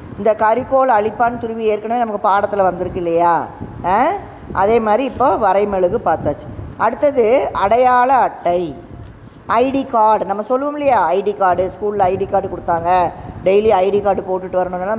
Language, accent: Tamil, native